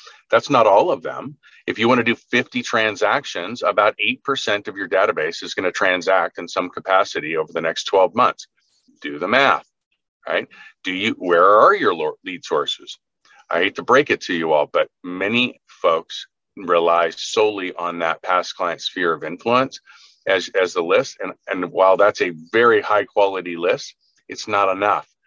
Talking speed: 180 wpm